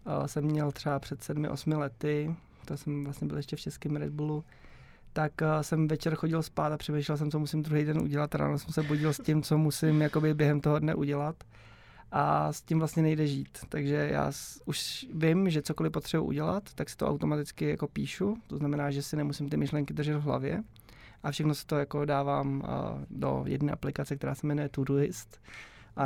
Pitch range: 145-155 Hz